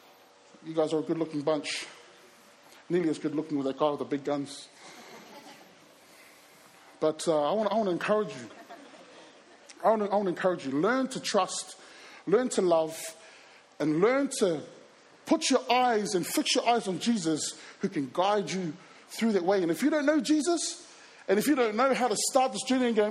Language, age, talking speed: English, 20-39, 195 wpm